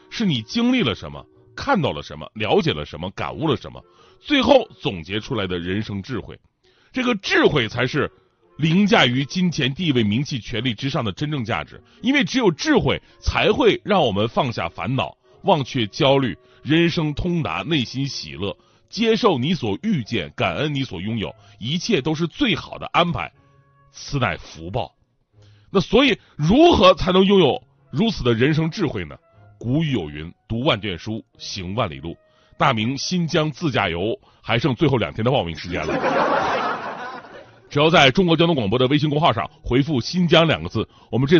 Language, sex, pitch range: Chinese, male, 110-180 Hz